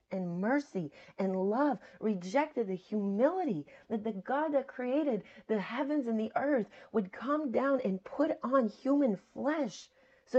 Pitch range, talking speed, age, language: 190-265 Hz, 150 wpm, 40-59, English